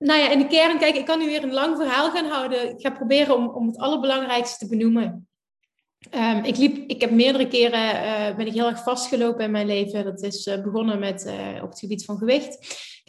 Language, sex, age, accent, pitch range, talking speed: Dutch, female, 20-39, Dutch, 215-260 Hz, 235 wpm